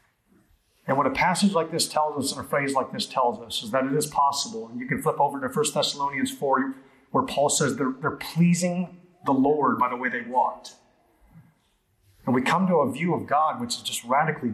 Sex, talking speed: male, 225 wpm